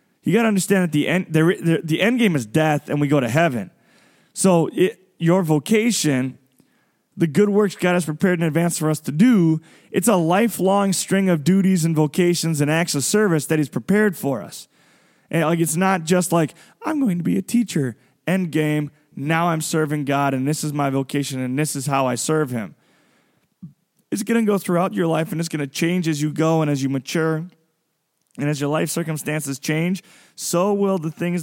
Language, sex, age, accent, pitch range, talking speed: English, male, 20-39, American, 150-190 Hz, 210 wpm